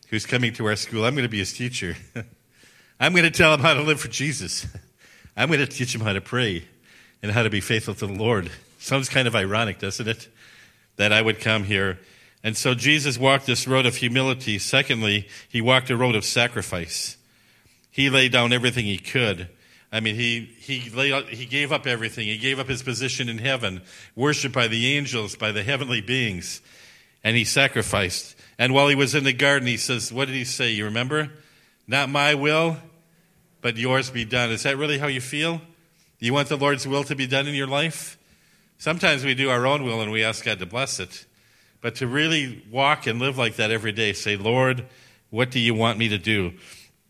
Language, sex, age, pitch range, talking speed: English, male, 50-69, 110-135 Hz, 215 wpm